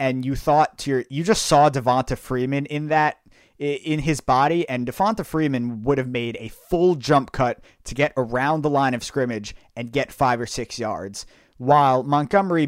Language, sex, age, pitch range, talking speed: English, male, 30-49, 115-145 Hz, 190 wpm